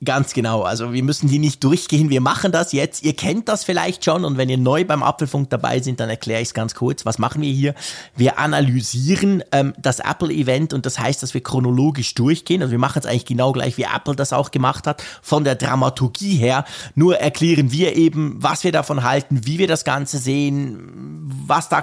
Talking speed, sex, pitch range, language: 215 wpm, male, 130-170 Hz, German